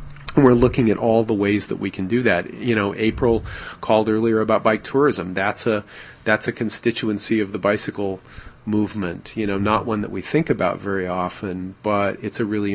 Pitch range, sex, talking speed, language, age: 100-115 Hz, male, 210 wpm, English, 40-59